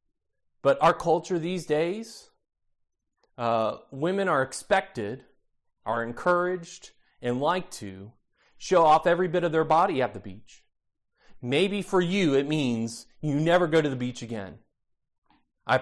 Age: 40-59